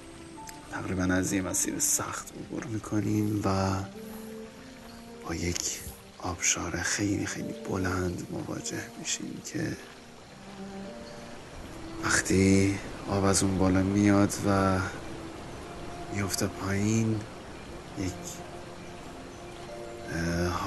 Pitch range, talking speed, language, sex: 90-110 Hz, 80 wpm, Persian, male